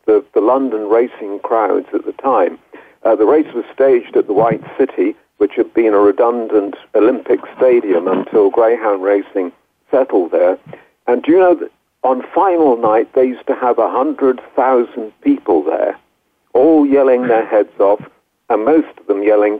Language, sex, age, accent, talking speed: English, male, 50-69, British, 165 wpm